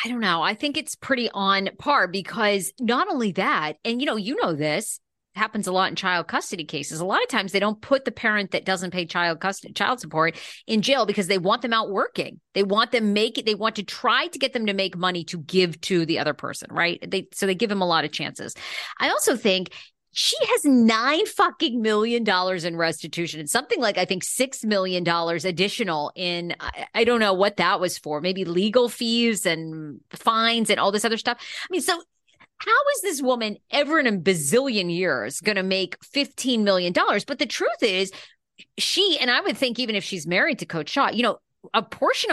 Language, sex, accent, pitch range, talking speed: English, female, American, 180-240 Hz, 225 wpm